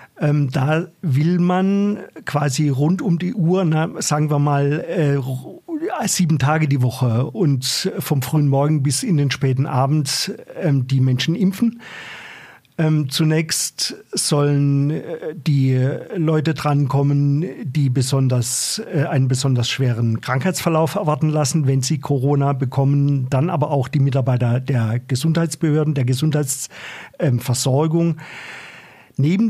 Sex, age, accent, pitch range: male, 50-69, German, 135-165 Hz